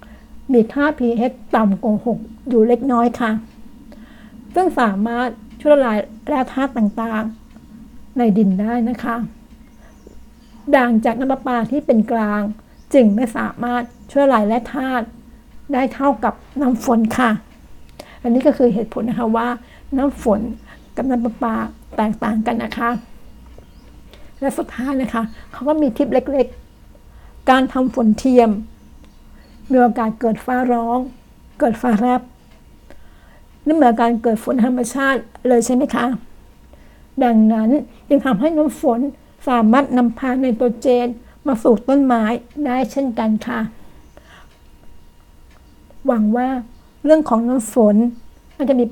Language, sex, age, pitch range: Thai, female, 60-79, 225-260 Hz